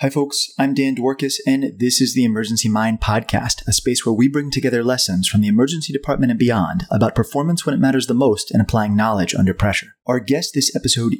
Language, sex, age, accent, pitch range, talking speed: English, male, 30-49, American, 110-135 Hz, 220 wpm